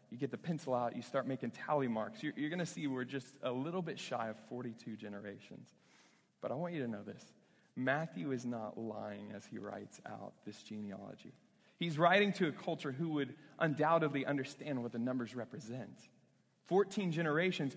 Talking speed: 185 wpm